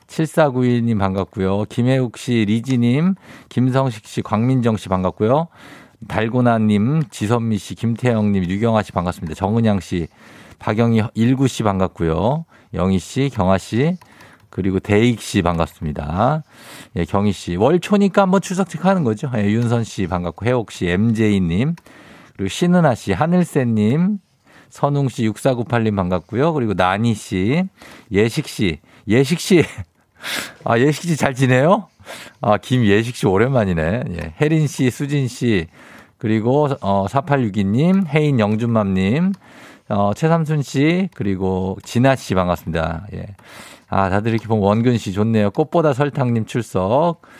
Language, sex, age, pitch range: Korean, male, 50-69, 95-135 Hz